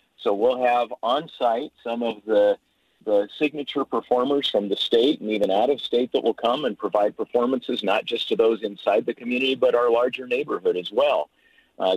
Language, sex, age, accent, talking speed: English, male, 50-69, American, 180 wpm